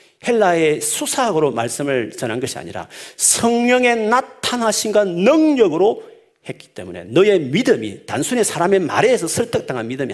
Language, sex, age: Korean, male, 40-59